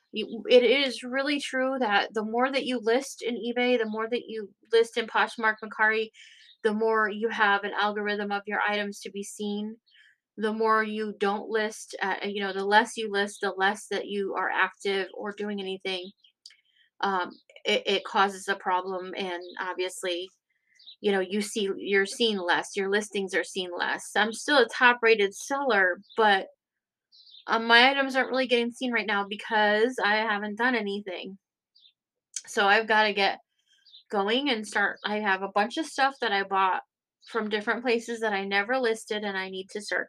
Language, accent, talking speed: English, American, 185 wpm